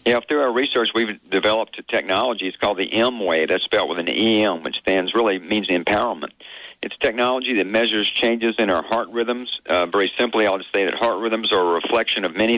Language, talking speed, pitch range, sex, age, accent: English, 220 wpm, 95-115 Hz, male, 50-69, American